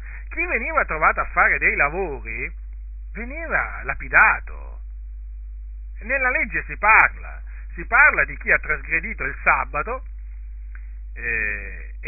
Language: Italian